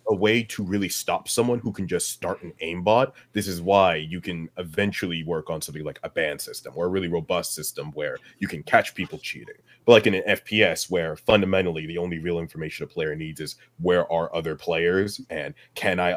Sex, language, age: male, English, 30-49